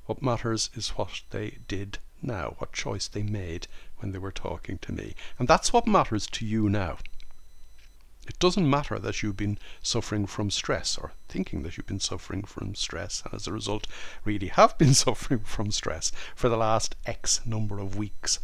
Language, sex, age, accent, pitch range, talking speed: English, male, 60-79, Irish, 100-120 Hz, 190 wpm